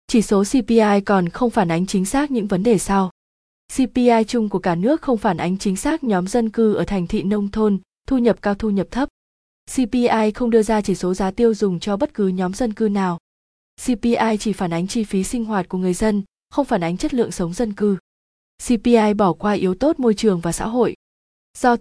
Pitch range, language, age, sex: 190-235 Hz, Vietnamese, 20-39, female